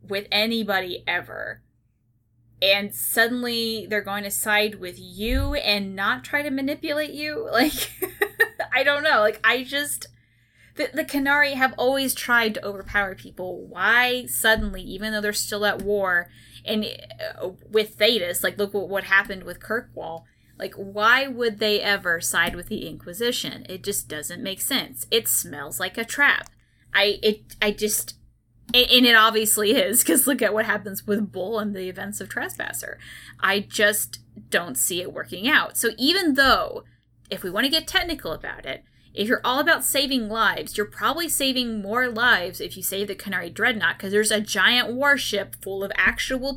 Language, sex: English, female